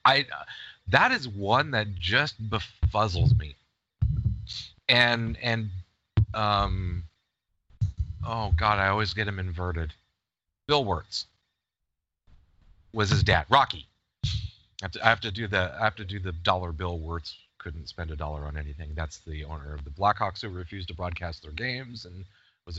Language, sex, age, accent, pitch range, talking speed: English, male, 30-49, American, 85-110 Hz, 160 wpm